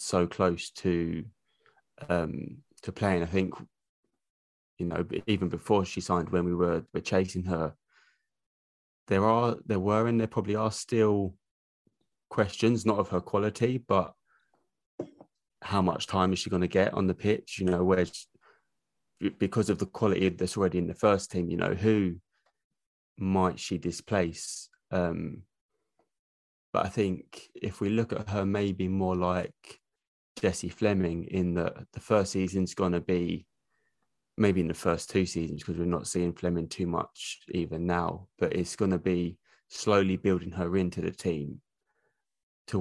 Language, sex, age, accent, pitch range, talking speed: English, male, 20-39, British, 85-95 Hz, 160 wpm